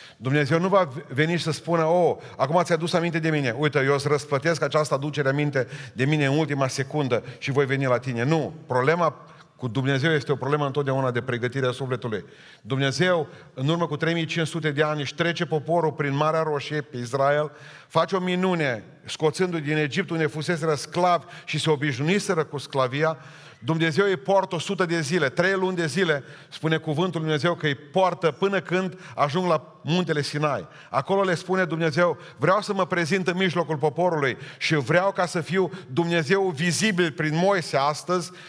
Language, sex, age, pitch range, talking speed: Romanian, male, 40-59, 145-180 Hz, 180 wpm